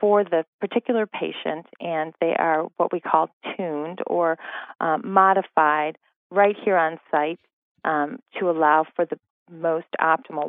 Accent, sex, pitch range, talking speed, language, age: American, female, 155-190 Hz, 145 wpm, English, 40-59